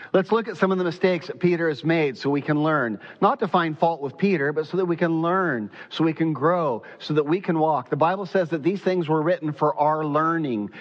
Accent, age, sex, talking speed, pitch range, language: American, 40-59, male, 260 wpm, 155-190 Hz, English